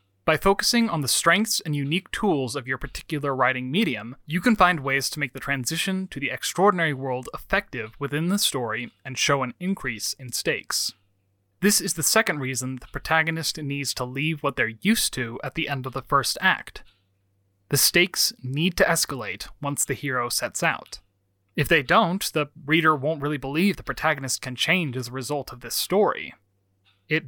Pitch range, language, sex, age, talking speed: 125-165 Hz, English, male, 30-49, 185 wpm